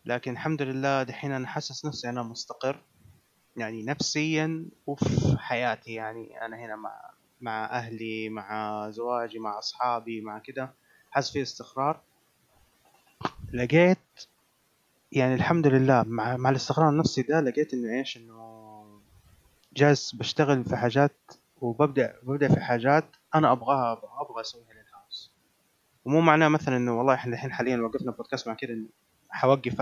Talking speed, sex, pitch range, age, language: 135 wpm, male, 115-140 Hz, 20-39, Arabic